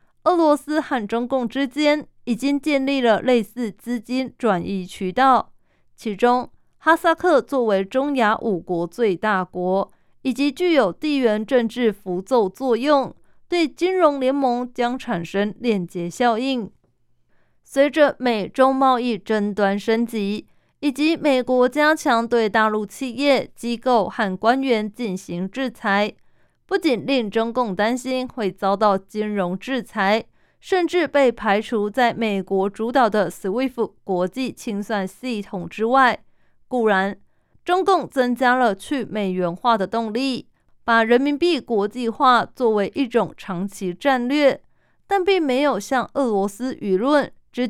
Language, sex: Chinese, female